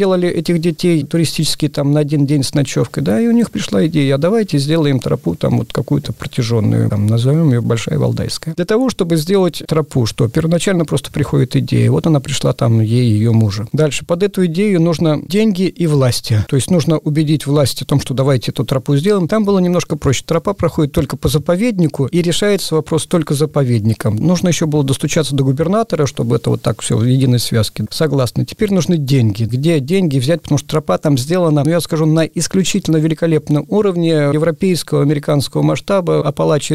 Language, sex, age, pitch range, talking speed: Russian, male, 50-69, 135-170 Hz, 190 wpm